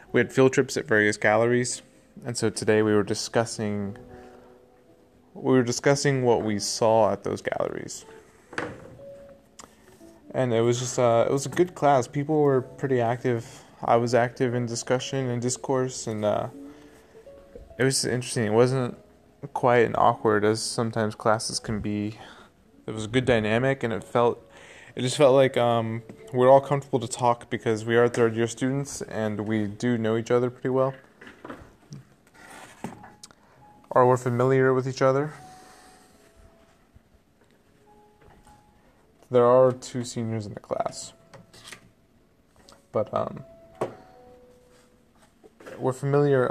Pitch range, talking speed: 110-130 Hz, 135 wpm